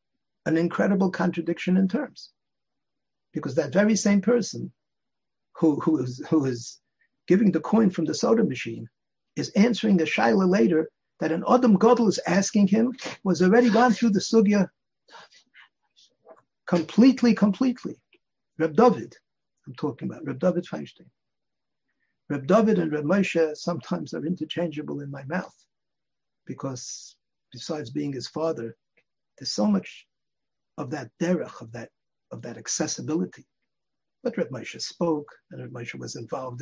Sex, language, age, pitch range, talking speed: male, English, 60-79, 155-220 Hz, 140 wpm